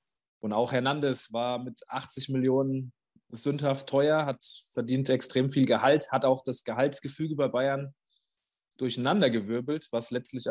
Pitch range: 115-135 Hz